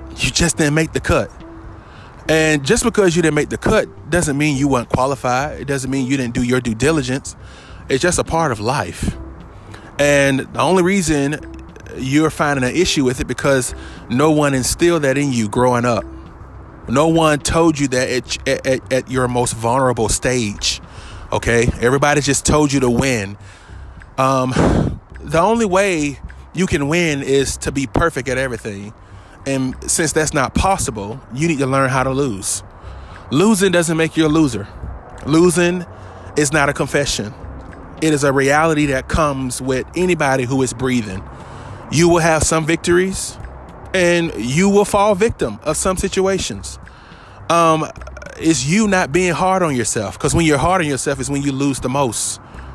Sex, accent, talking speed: male, American, 170 wpm